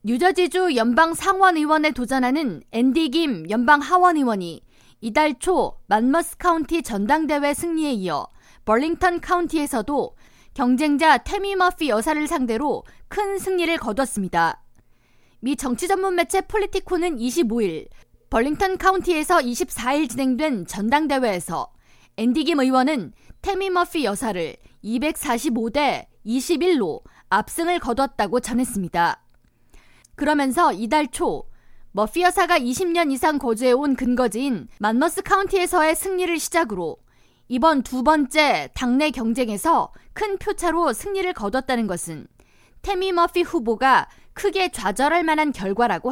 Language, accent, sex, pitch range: Korean, native, female, 235-345 Hz